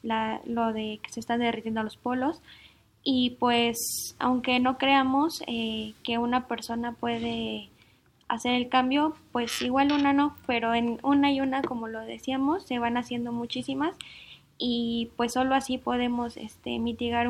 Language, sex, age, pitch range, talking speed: Spanish, female, 10-29, 230-255 Hz, 155 wpm